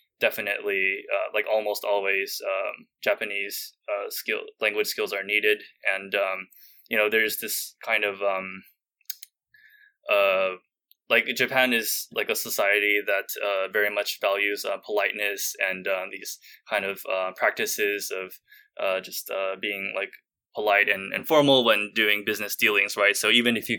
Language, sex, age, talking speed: English, male, 20-39, 155 wpm